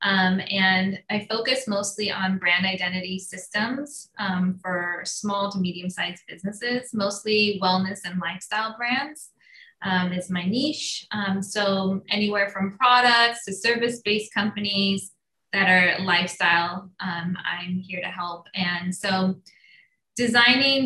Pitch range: 185-210 Hz